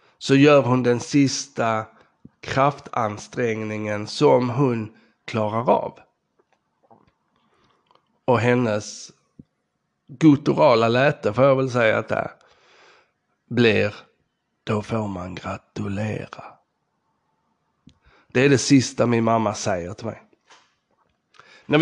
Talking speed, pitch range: 95 wpm, 110-135 Hz